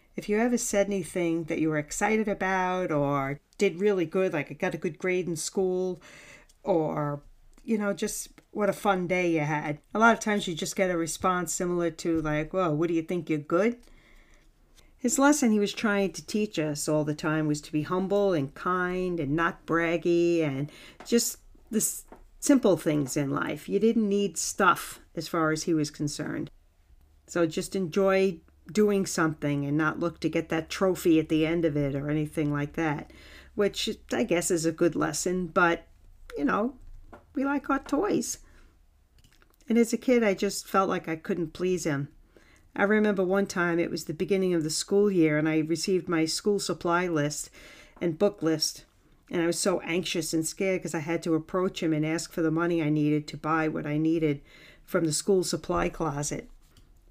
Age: 50-69